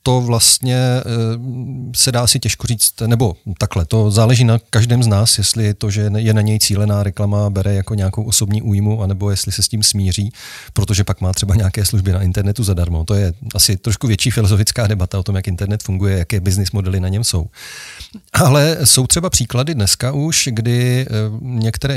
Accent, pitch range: native, 100-115 Hz